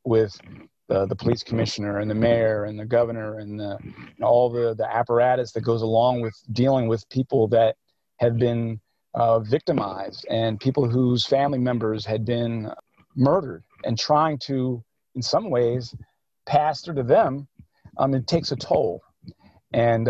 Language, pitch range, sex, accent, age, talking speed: English, 115-135 Hz, male, American, 40-59, 160 wpm